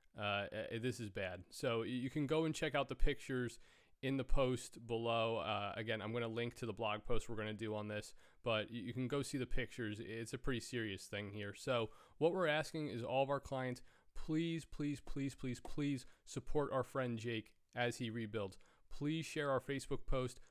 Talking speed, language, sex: 215 wpm, English, male